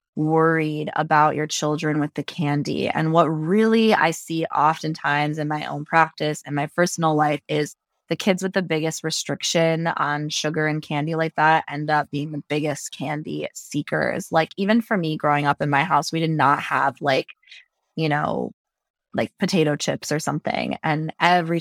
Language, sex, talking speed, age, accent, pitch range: English, female, 180 wpm, 20-39, American, 150-180 Hz